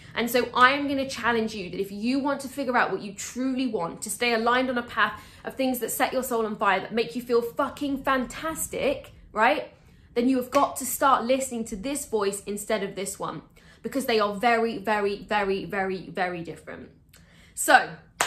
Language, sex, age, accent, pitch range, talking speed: English, female, 10-29, British, 195-245 Hz, 210 wpm